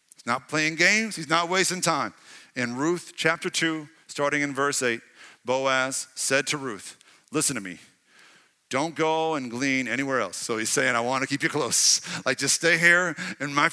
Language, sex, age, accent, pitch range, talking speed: English, male, 50-69, American, 140-180 Hz, 190 wpm